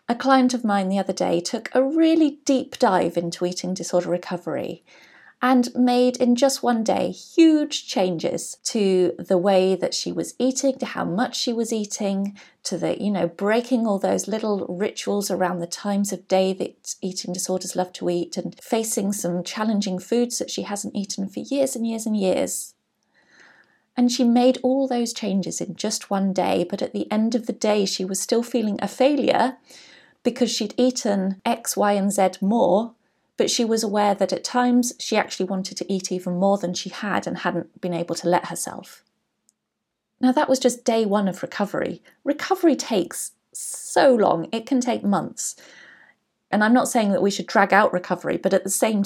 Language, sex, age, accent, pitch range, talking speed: English, female, 30-49, British, 185-245 Hz, 190 wpm